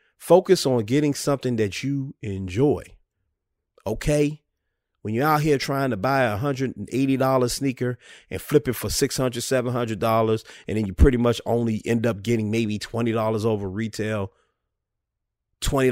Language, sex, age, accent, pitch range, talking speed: English, male, 30-49, American, 105-130 Hz, 175 wpm